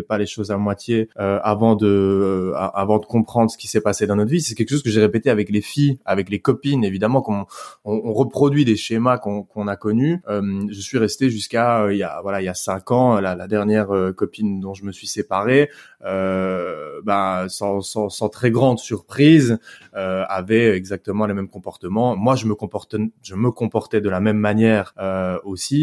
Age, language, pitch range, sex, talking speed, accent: 20-39, French, 100-125 Hz, male, 220 wpm, French